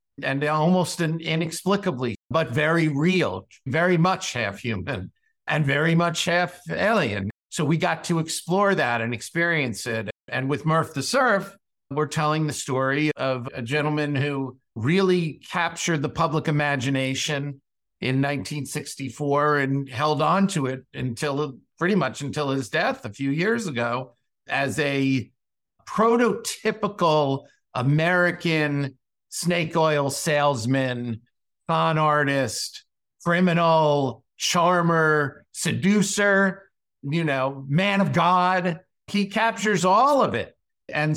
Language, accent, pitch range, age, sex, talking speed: English, American, 135-175 Hz, 50-69, male, 120 wpm